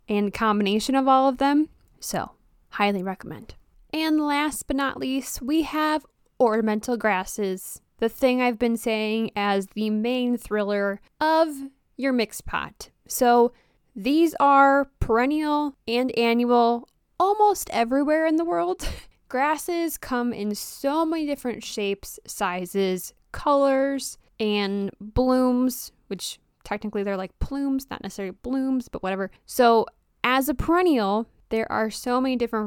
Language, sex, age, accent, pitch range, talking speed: English, female, 10-29, American, 205-270 Hz, 130 wpm